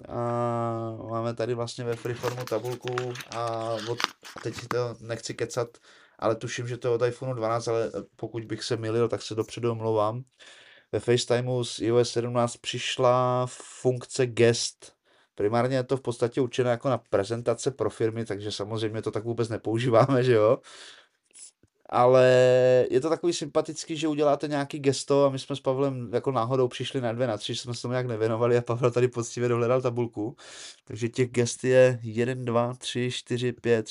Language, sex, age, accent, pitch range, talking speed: Czech, male, 20-39, native, 115-125 Hz, 175 wpm